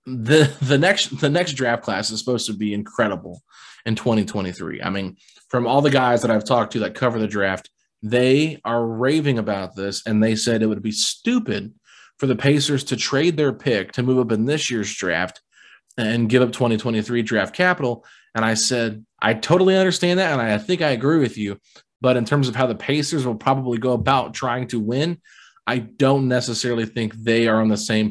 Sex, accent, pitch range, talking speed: male, American, 110-135 Hz, 205 wpm